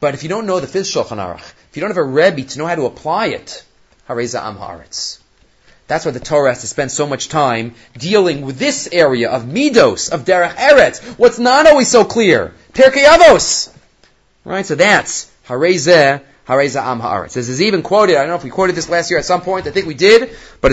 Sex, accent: male, Canadian